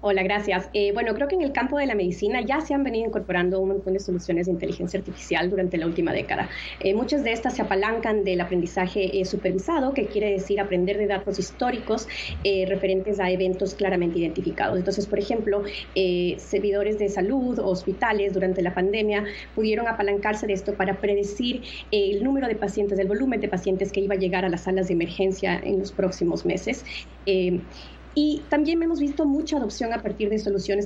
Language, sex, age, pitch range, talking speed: Spanish, female, 30-49, 190-220 Hz, 190 wpm